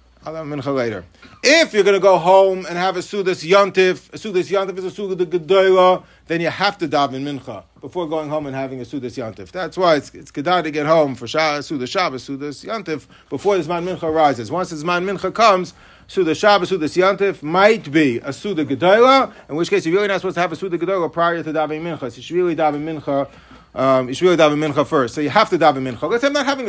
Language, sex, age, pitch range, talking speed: English, male, 40-59, 155-230 Hz, 245 wpm